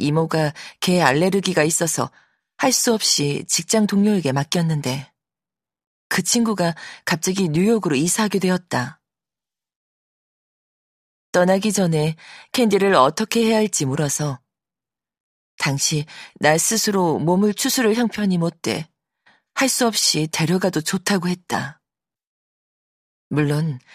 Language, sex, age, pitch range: Korean, female, 40-59, 150-200 Hz